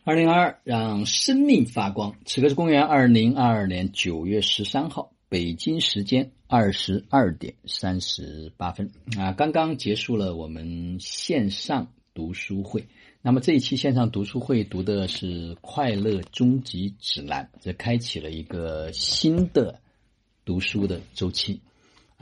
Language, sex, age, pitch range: Chinese, male, 50-69, 85-115 Hz